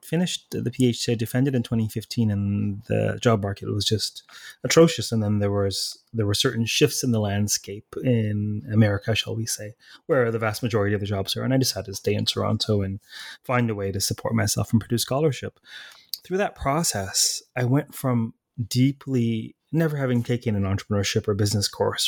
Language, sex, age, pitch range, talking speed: English, male, 30-49, 105-125 Hz, 190 wpm